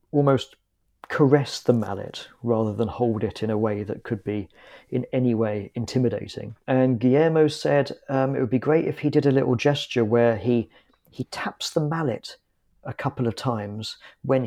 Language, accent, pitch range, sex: Polish, British, 115-145 Hz, male